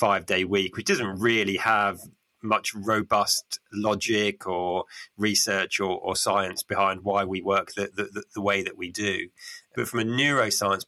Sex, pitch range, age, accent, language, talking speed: male, 100-120 Hz, 20-39, British, English, 165 wpm